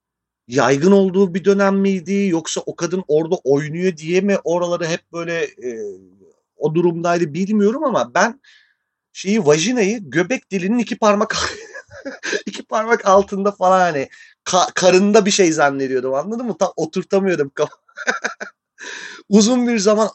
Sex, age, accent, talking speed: male, 40-59, native, 130 wpm